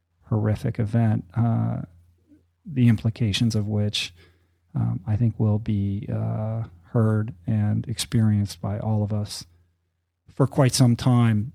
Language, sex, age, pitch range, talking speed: English, male, 40-59, 105-115 Hz, 125 wpm